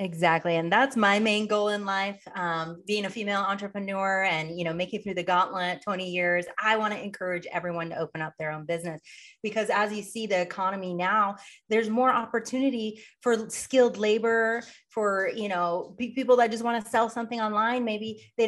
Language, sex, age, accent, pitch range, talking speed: English, female, 30-49, American, 175-225 Hz, 195 wpm